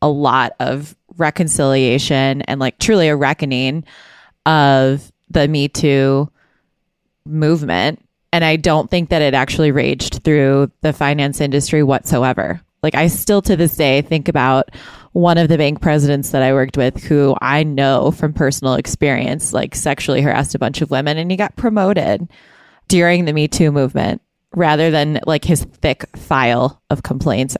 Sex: female